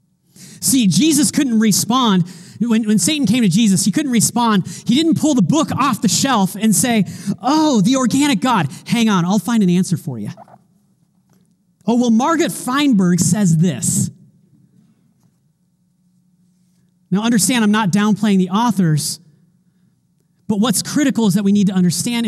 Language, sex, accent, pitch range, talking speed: English, male, American, 175-225 Hz, 155 wpm